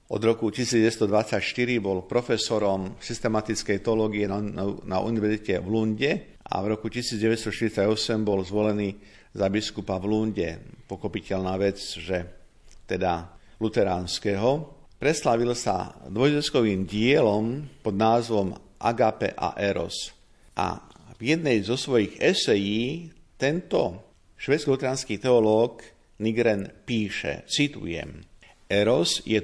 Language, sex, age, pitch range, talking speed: Slovak, male, 50-69, 100-115 Hz, 105 wpm